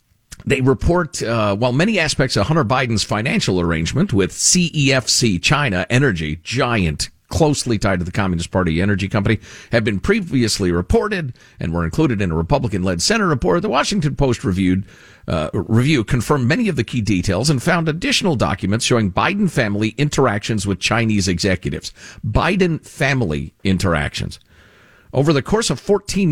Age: 50-69